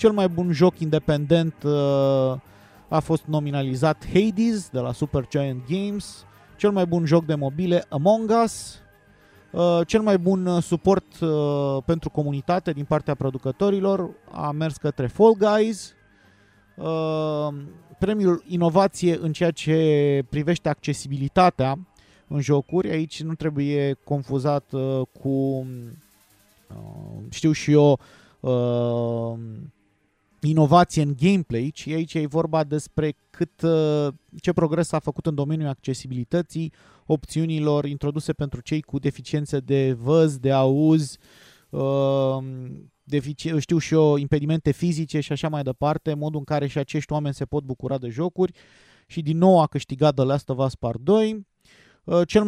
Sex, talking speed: male, 135 wpm